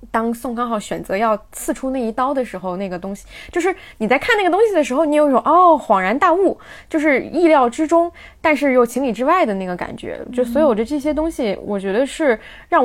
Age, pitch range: 20-39, 195-270 Hz